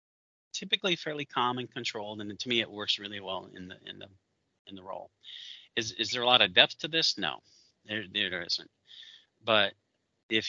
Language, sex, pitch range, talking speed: English, male, 105-140 Hz, 195 wpm